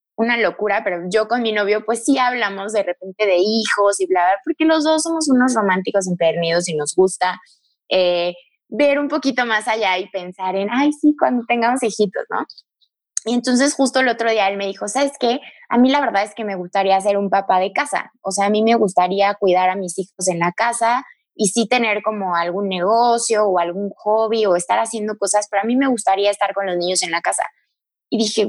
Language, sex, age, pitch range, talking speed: Spanish, female, 20-39, 190-235 Hz, 220 wpm